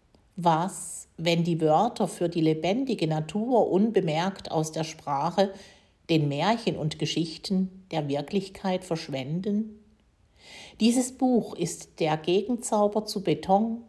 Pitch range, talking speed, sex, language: 150-195 Hz, 110 wpm, female, German